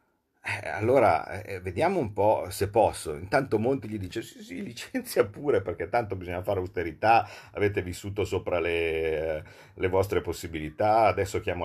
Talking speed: 145 wpm